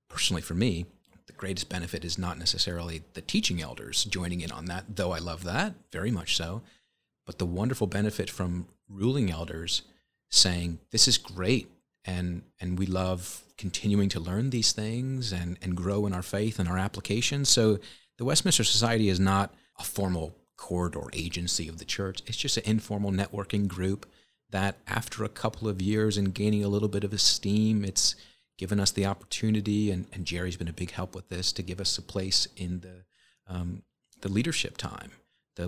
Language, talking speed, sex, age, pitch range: English, 185 wpm, male, 40-59, 90-105 Hz